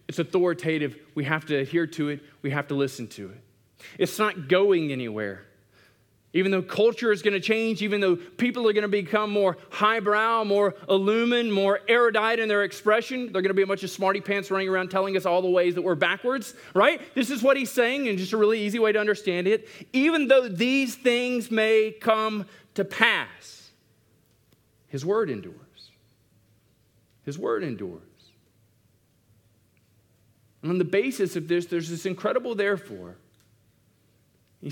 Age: 30-49